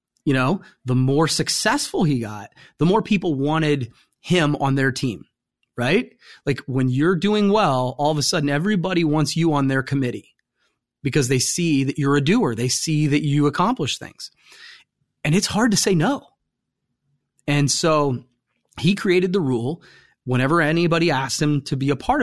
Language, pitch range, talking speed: English, 135-170 Hz, 175 wpm